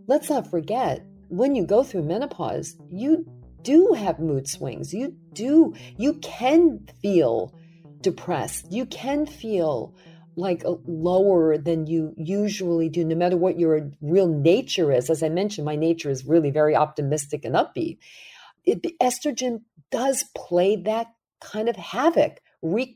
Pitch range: 160-250 Hz